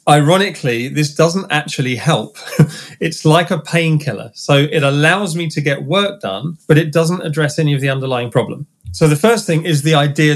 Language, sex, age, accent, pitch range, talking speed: English, male, 30-49, British, 130-165 Hz, 190 wpm